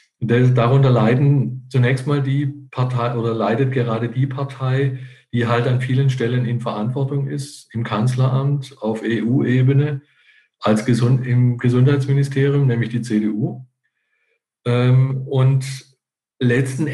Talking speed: 115 wpm